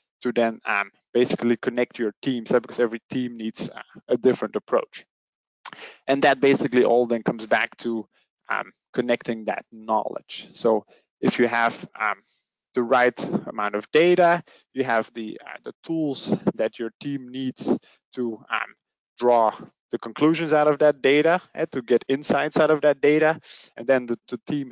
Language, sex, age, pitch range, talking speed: English, male, 20-39, 110-130 Hz, 170 wpm